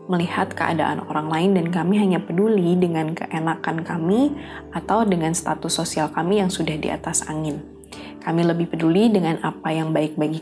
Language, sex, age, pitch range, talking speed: Indonesian, female, 20-39, 165-195 Hz, 165 wpm